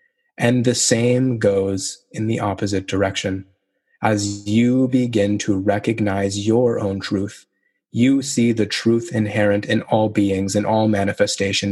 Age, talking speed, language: 20-39, 140 wpm, English